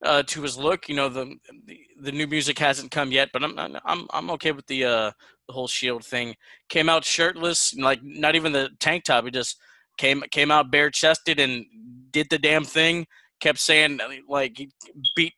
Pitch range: 135-160 Hz